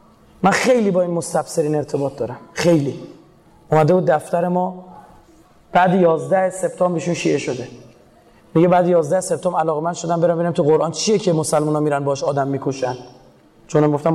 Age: 30-49